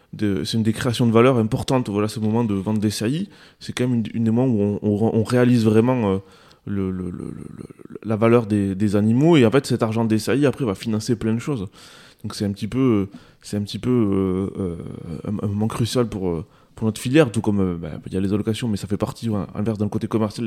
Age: 20-39